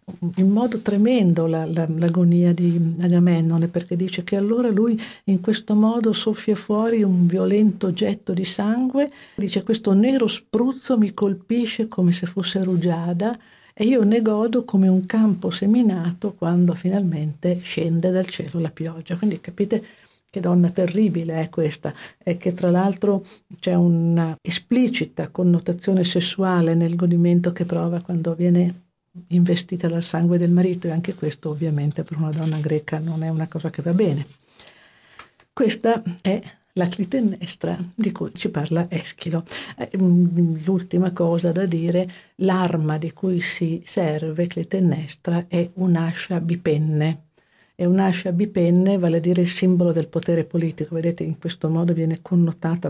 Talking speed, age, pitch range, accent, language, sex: 145 wpm, 50-69, 165-195 Hz, native, Italian, female